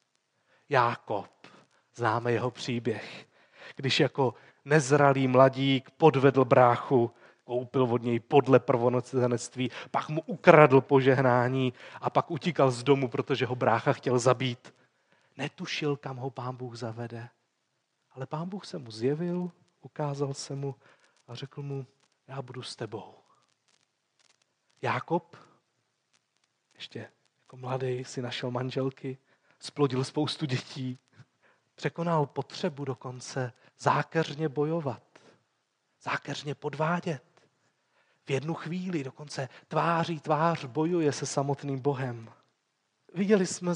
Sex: male